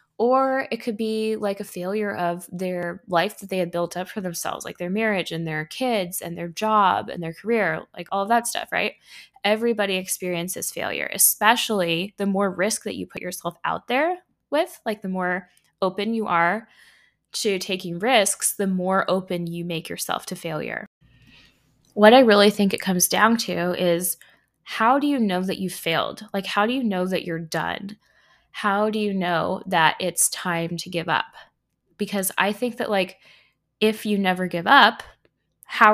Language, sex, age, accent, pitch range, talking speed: English, female, 10-29, American, 175-210 Hz, 185 wpm